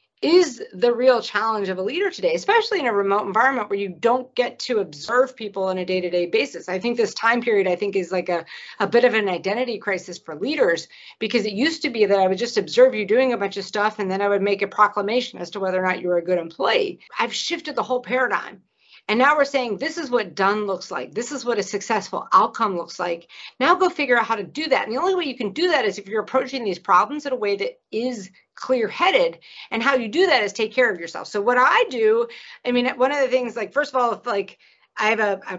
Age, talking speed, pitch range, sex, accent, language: 50-69, 265 wpm, 200-260 Hz, female, American, English